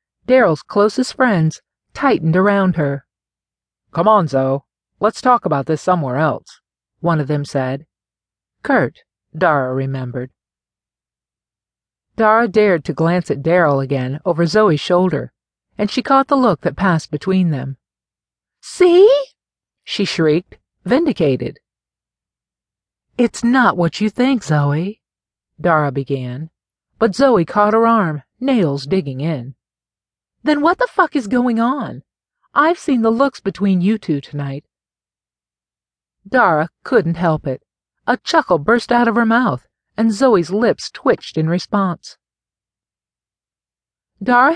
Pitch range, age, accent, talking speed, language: 155-240 Hz, 50-69, American, 125 wpm, English